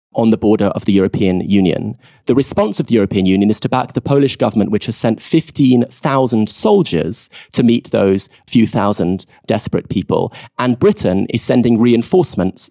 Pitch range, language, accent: 100-135 Hz, English, British